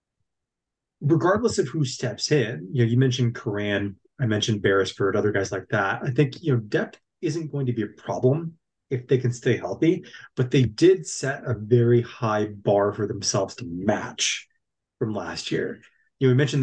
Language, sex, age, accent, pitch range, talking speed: English, male, 30-49, American, 110-135 Hz, 190 wpm